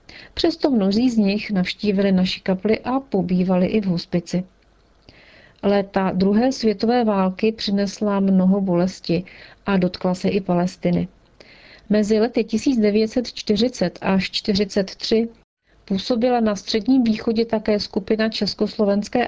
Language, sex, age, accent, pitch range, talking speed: Czech, female, 40-59, native, 190-220 Hz, 110 wpm